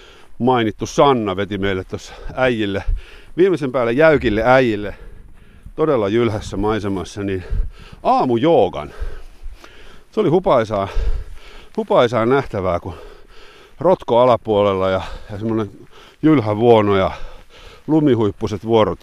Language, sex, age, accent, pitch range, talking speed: Finnish, male, 50-69, native, 95-120 Hz, 100 wpm